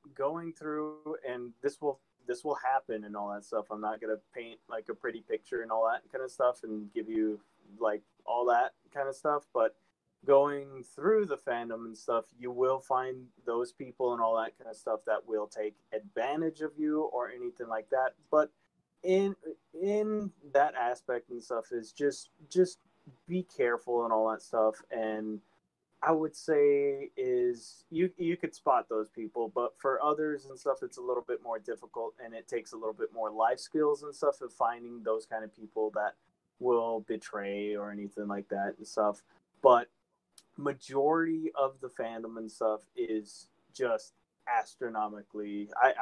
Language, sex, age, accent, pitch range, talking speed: English, male, 20-39, American, 110-155 Hz, 180 wpm